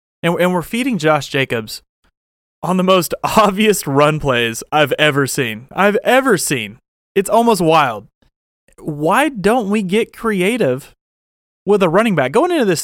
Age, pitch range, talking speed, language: 30-49, 140-195 Hz, 150 wpm, English